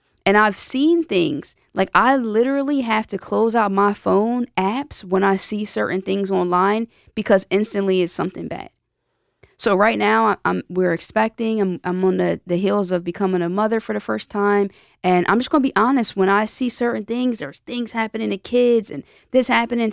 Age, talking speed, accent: 20-39, 195 wpm, American